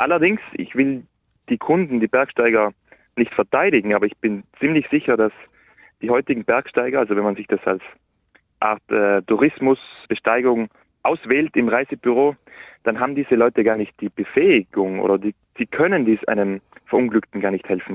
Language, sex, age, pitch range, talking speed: German, male, 30-49, 105-130 Hz, 160 wpm